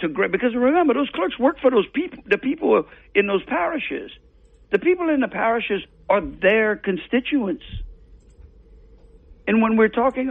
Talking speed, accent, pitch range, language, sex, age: 150 wpm, American, 180-255 Hz, English, male, 60-79